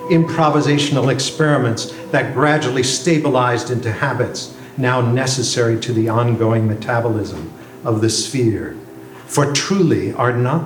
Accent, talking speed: American, 115 wpm